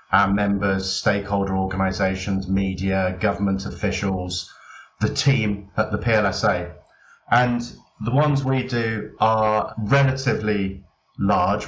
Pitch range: 95-120 Hz